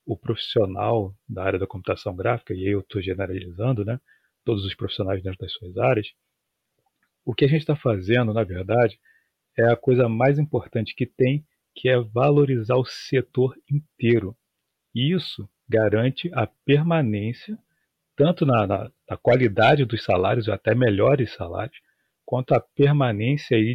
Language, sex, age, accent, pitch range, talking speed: Portuguese, male, 40-59, Brazilian, 110-145 Hz, 155 wpm